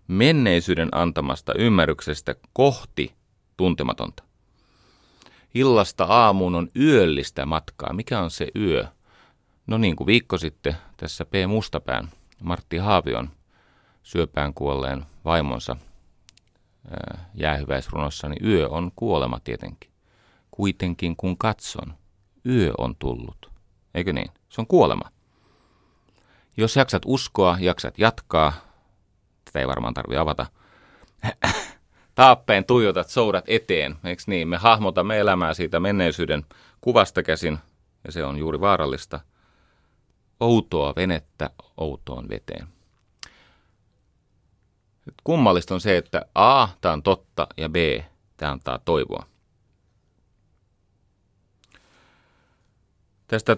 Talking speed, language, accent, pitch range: 100 wpm, Finnish, native, 80-100 Hz